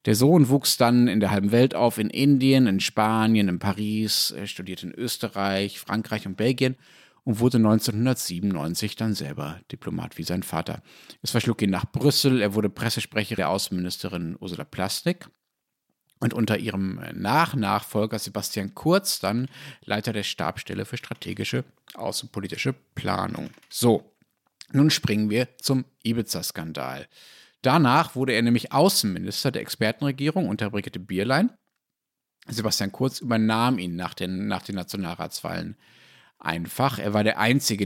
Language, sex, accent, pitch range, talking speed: German, male, German, 100-130 Hz, 135 wpm